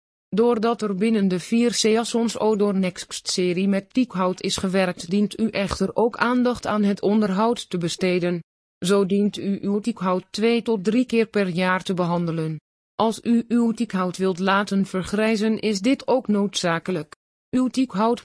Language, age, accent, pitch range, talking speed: Dutch, 20-39, Dutch, 195-225 Hz, 160 wpm